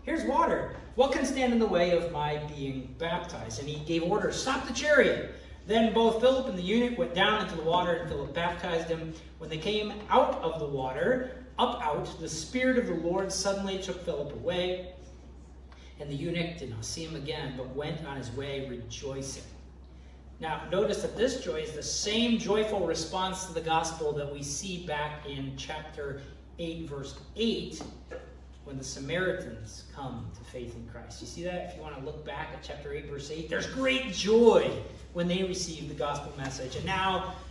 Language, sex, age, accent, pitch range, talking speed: English, male, 40-59, American, 135-190 Hz, 195 wpm